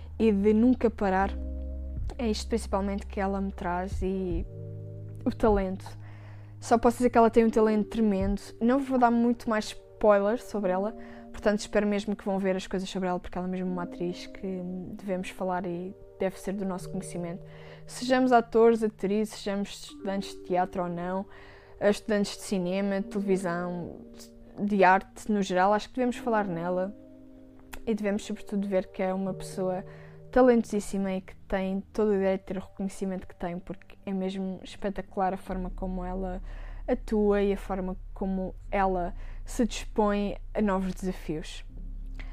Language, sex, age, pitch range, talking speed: Portuguese, female, 20-39, 180-215 Hz, 165 wpm